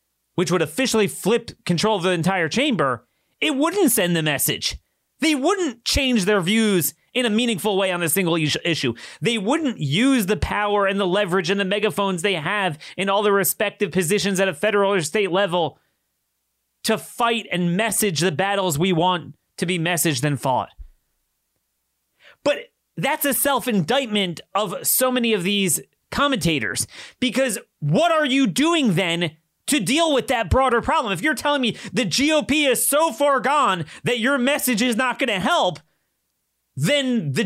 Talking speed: 170 wpm